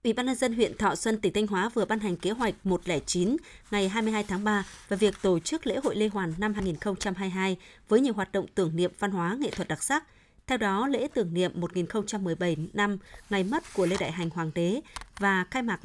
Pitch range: 180-220 Hz